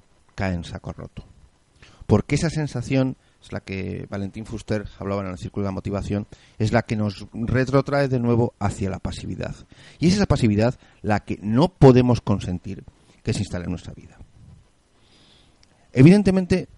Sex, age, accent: male, 40-59, Spanish